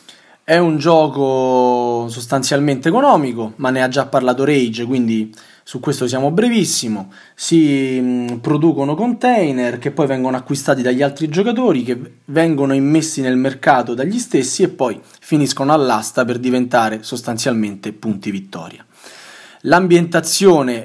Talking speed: 125 wpm